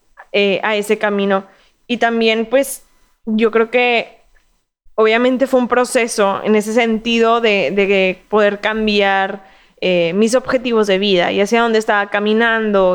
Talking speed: 145 wpm